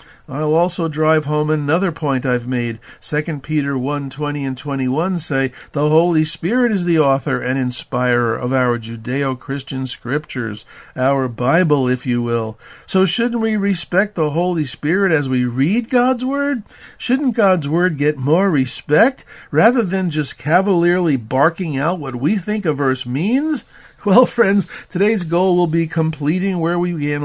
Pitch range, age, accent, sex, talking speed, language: 135-175 Hz, 50-69, American, male, 160 wpm, English